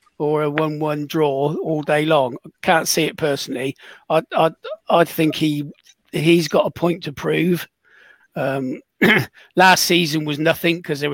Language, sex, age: English, male, 40-59